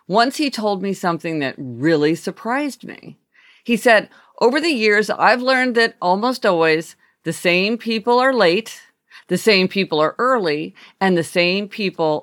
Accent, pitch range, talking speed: American, 170-240 Hz, 160 wpm